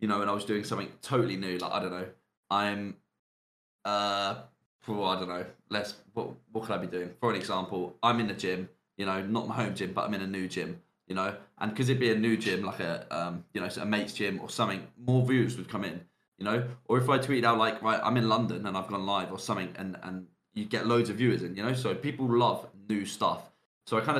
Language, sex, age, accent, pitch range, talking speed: English, male, 20-39, British, 95-120 Hz, 260 wpm